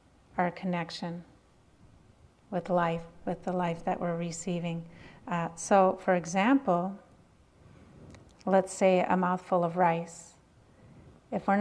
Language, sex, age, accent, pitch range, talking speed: English, female, 40-59, American, 180-195 Hz, 115 wpm